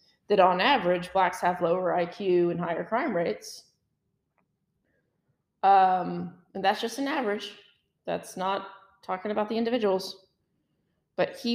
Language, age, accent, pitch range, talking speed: English, 30-49, American, 185-235 Hz, 130 wpm